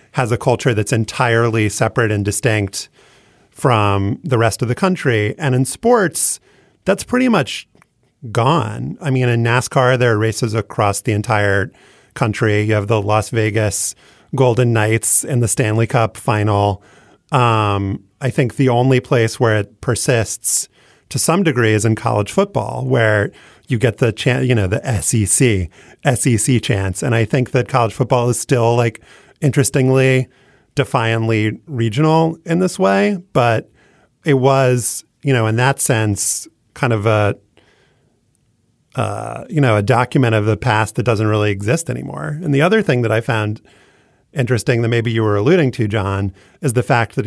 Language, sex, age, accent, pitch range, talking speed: English, male, 30-49, American, 110-135 Hz, 165 wpm